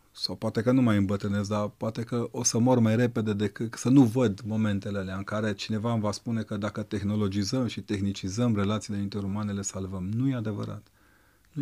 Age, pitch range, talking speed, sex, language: 30-49, 100-115 Hz, 200 wpm, male, Romanian